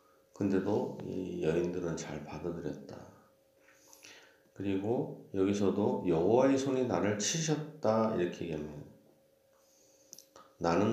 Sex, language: male, Korean